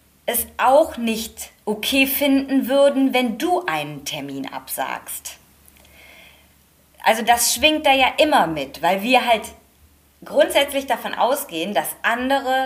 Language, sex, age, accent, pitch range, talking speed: German, female, 20-39, German, 170-275 Hz, 125 wpm